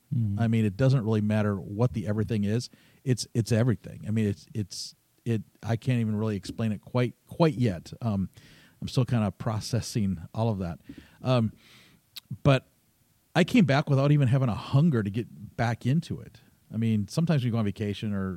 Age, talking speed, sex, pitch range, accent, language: 40-59, 195 wpm, male, 105-130 Hz, American, English